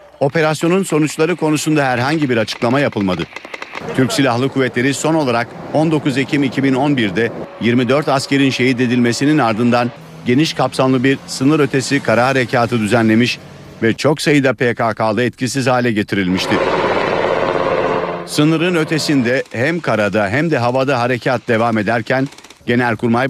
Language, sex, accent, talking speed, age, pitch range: Turkish, male, native, 115 wpm, 50-69, 120-135 Hz